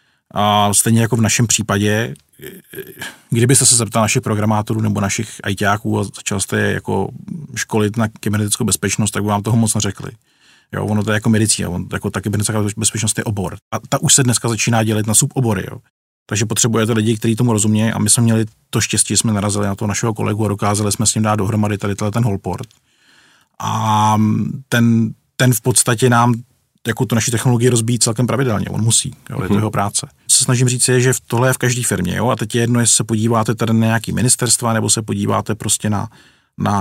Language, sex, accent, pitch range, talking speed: Czech, male, native, 105-120 Hz, 205 wpm